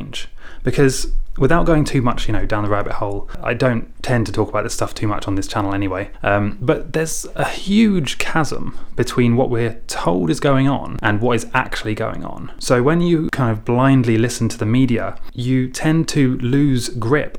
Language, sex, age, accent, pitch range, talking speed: English, male, 20-39, British, 110-135 Hz, 205 wpm